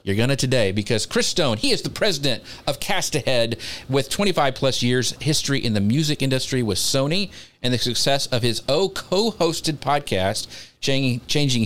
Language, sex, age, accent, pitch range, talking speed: English, male, 40-59, American, 115-155 Hz, 175 wpm